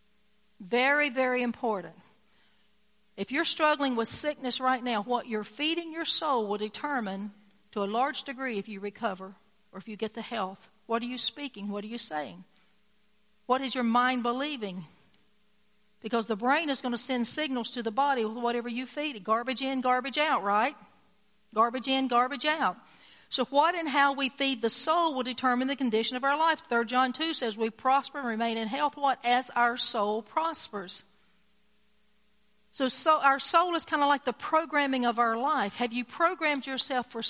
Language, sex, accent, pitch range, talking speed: English, female, American, 210-270 Hz, 185 wpm